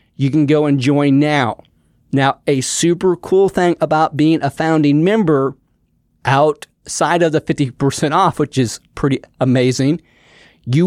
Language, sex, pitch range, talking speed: English, male, 140-165 Hz, 145 wpm